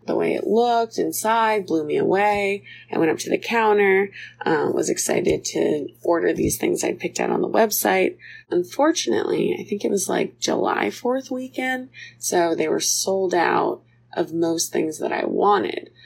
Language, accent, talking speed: English, American, 175 wpm